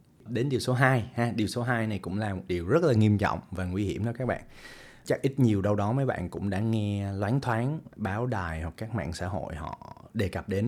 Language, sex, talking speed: Vietnamese, male, 260 wpm